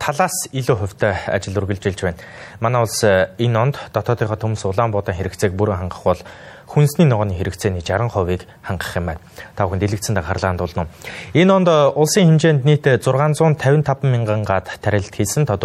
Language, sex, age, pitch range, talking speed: English, male, 20-39, 95-135 Hz, 95 wpm